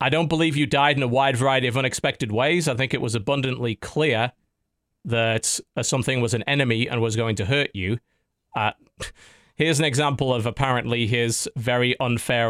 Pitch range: 105-140 Hz